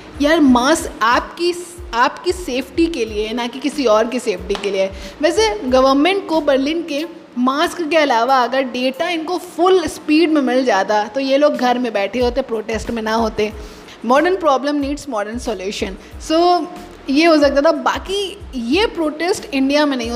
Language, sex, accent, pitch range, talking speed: Hindi, female, native, 245-330 Hz, 180 wpm